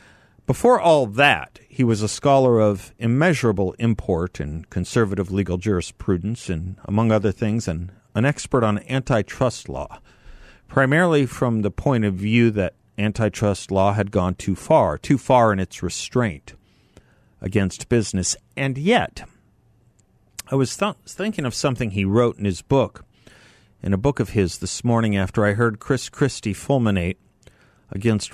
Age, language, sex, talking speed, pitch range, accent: 50-69, English, male, 150 wpm, 100-135 Hz, American